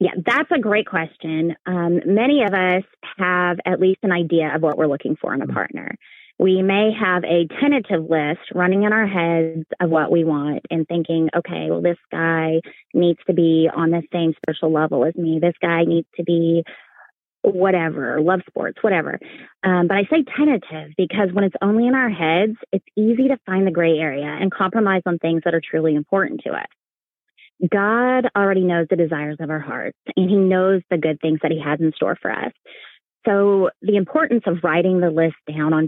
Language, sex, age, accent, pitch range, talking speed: English, female, 30-49, American, 160-190 Hz, 200 wpm